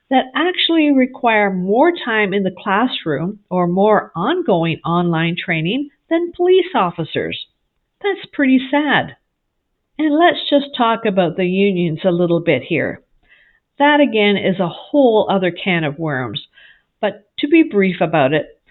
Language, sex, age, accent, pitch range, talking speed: English, female, 50-69, American, 185-260 Hz, 145 wpm